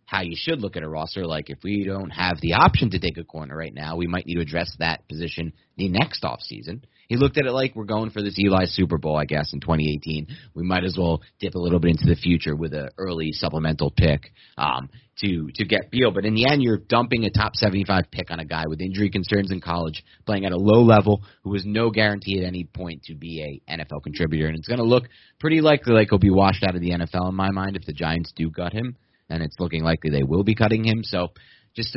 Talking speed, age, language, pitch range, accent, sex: 255 wpm, 30-49, English, 80-110 Hz, American, male